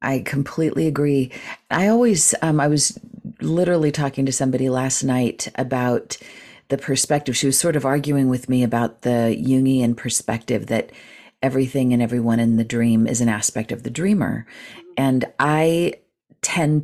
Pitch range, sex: 120-150 Hz, female